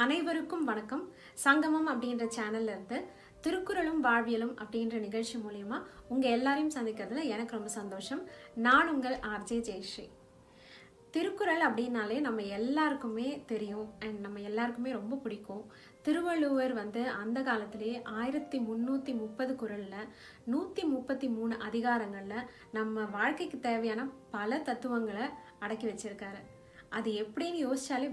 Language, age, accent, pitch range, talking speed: Tamil, 30-49, native, 215-265 Hz, 115 wpm